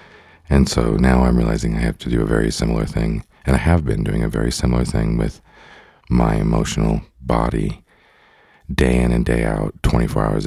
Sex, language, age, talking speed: male, English, 40-59, 190 wpm